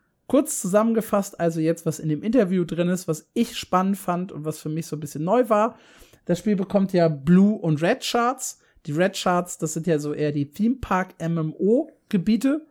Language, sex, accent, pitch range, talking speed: German, male, German, 160-210 Hz, 195 wpm